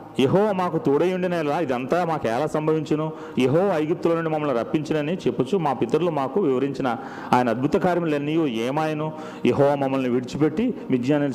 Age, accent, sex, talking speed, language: 40-59, native, male, 145 wpm, Telugu